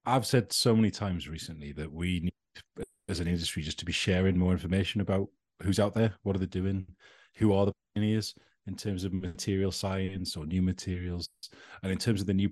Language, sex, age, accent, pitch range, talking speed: English, male, 40-59, British, 90-105 Hz, 210 wpm